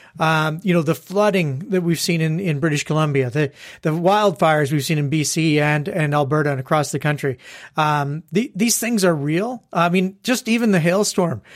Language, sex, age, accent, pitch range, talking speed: English, male, 40-59, American, 155-195 Hz, 195 wpm